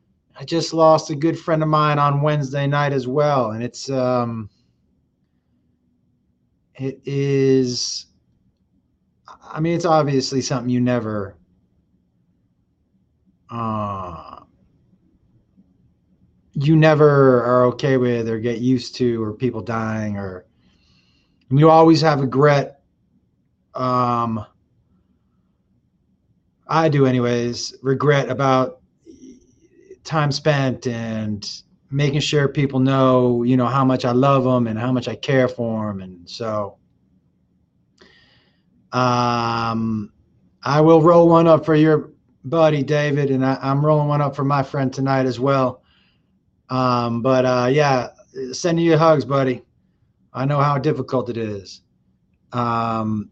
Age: 30-49